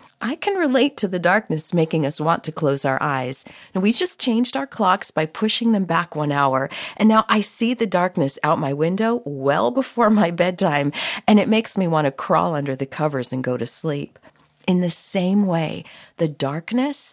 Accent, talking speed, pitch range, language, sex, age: American, 205 wpm, 140-215 Hz, English, female, 50-69